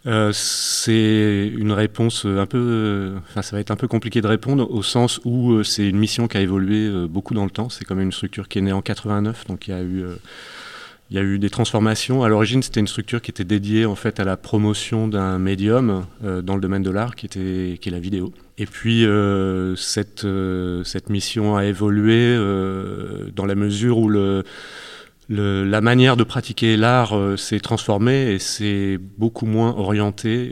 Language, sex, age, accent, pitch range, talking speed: French, male, 30-49, French, 100-115 Hz, 210 wpm